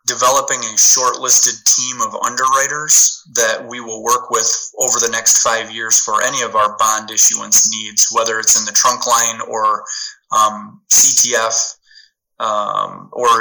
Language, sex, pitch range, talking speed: English, male, 110-130 Hz, 150 wpm